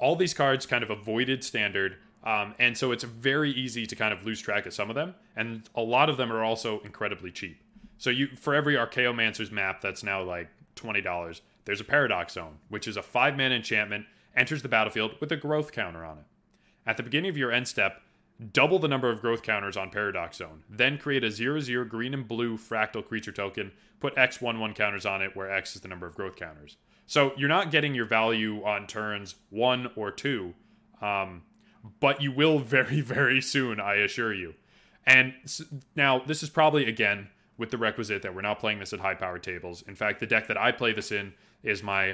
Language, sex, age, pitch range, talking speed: English, male, 20-39, 100-130 Hz, 210 wpm